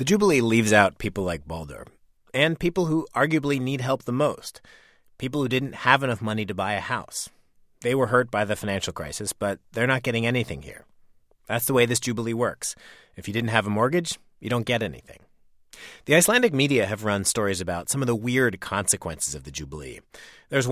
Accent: American